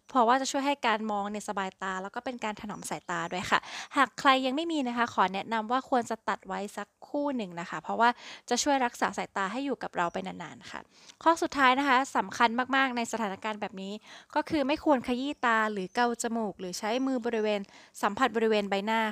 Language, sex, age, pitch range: Thai, female, 20-39, 210-275 Hz